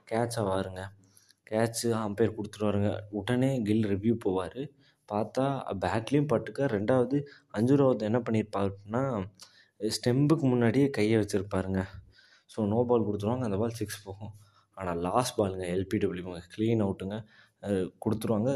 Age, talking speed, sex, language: 20-39, 125 wpm, male, Tamil